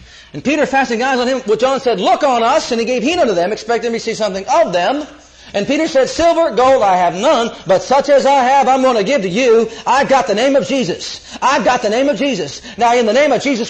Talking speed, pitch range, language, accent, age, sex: 265 wpm, 190-265 Hz, English, American, 40-59, male